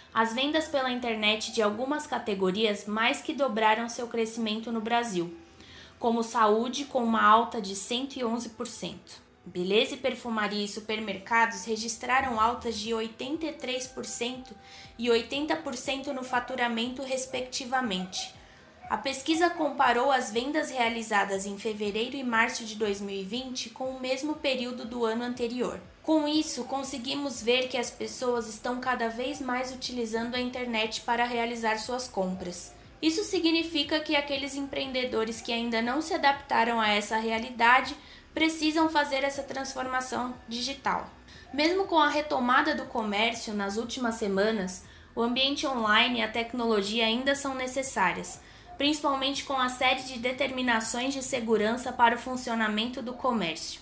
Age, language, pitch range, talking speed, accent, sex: 20-39, Portuguese, 225-270 Hz, 135 wpm, Brazilian, female